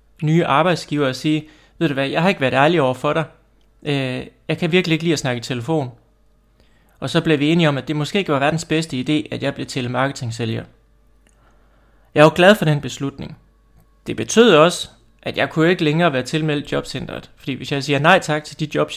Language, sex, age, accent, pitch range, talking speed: Danish, male, 30-49, native, 130-160 Hz, 215 wpm